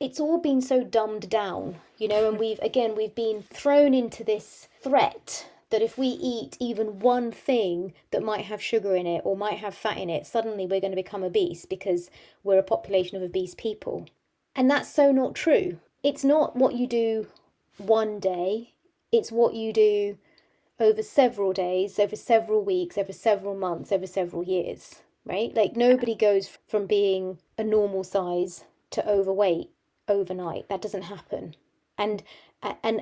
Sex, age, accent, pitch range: female, 30-49, British, 190-240 Hz